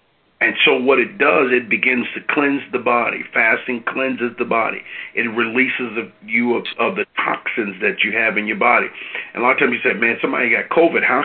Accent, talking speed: American, 215 wpm